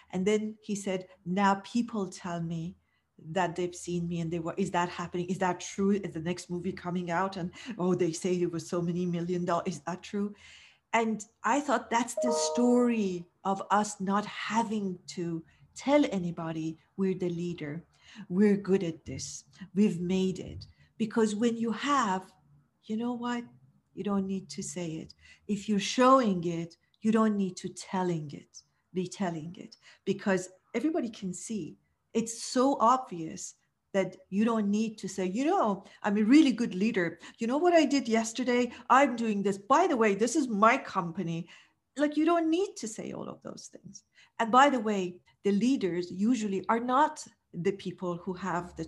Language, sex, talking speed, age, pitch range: English, female, 185 wpm, 50-69, 175-225 Hz